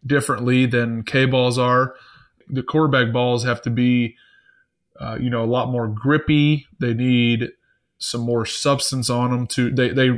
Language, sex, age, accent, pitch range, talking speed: English, male, 20-39, American, 120-130 Hz, 165 wpm